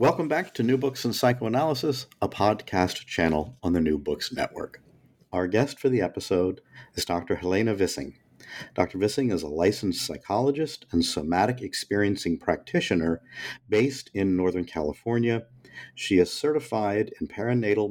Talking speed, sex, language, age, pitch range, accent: 145 wpm, male, English, 50-69, 90-125 Hz, American